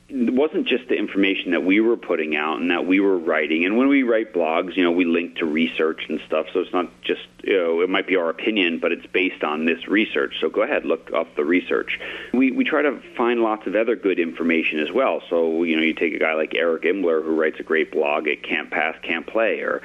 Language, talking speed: English, 255 wpm